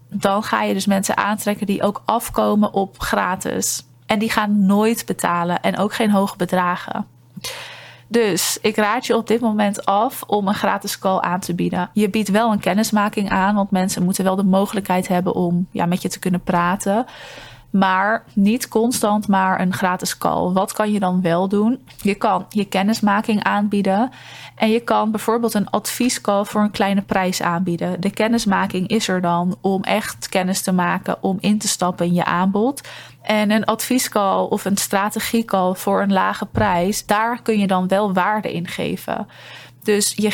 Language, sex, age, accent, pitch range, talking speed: Dutch, female, 20-39, Dutch, 185-210 Hz, 180 wpm